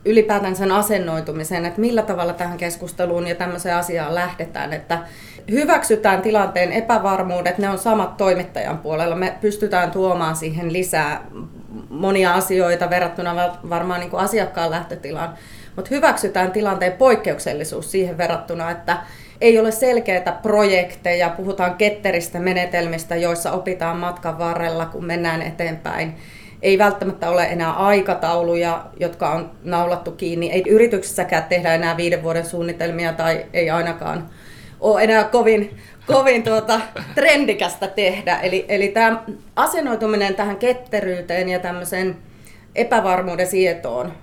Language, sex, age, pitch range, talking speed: Finnish, female, 30-49, 170-200 Hz, 120 wpm